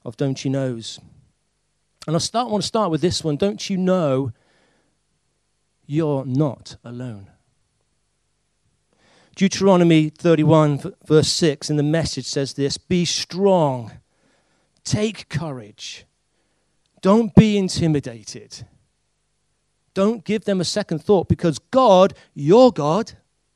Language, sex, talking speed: English, male, 115 wpm